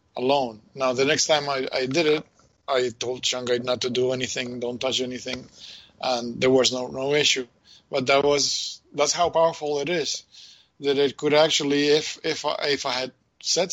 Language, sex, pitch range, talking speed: English, male, 135-165 Hz, 190 wpm